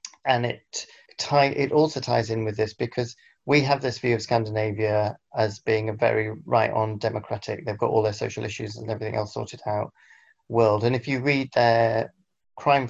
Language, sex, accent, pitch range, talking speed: English, male, British, 110-130 Hz, 185 wpm